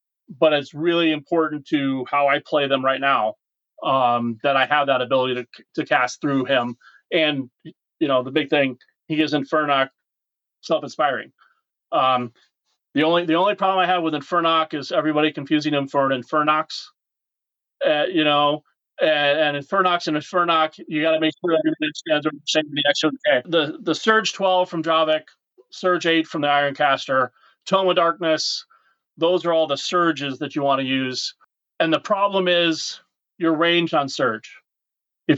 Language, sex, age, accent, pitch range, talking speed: English, male, 30-49, American, 145-170 Hz, 175 wpm